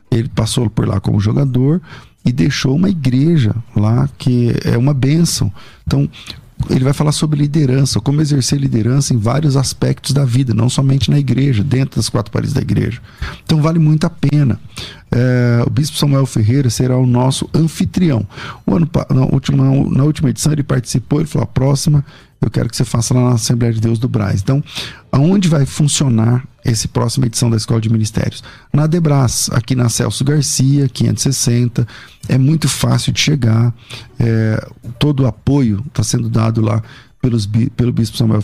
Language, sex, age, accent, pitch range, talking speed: Portuguese, male, 40-59, Brazilian, 115-140 Hz, 165 wpm